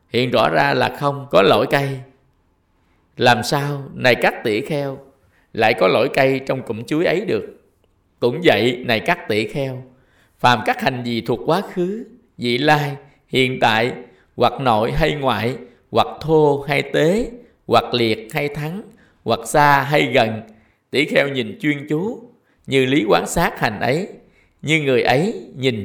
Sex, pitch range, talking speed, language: male, 125-150 Hz, 165 wpm, Vietnamese